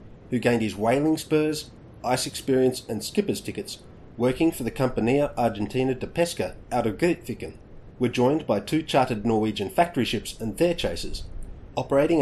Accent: Australian